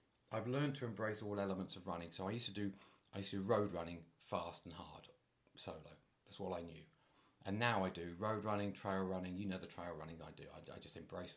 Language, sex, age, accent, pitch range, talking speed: English, male, 30-49, British, 90-105 Hz, 245 wpm